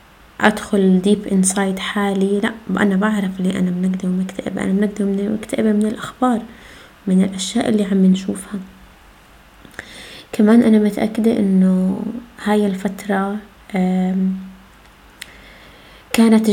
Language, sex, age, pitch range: Arabic, female, 20-39, 190-225 Hz